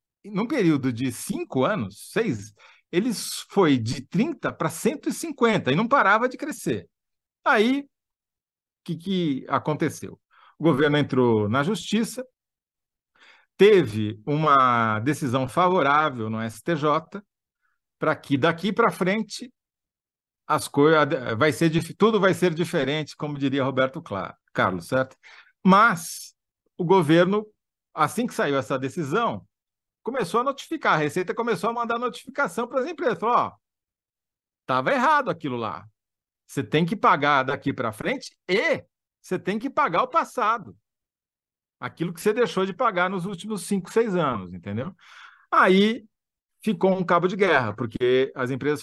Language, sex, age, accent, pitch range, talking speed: Portuguese, male, 50-69, Brazilian, 130-205 Hz, 140 wpm